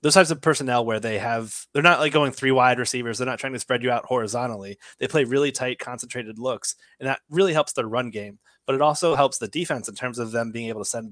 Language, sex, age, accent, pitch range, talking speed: English, male, 20-39, American, 110-135 Hz, 265 wpm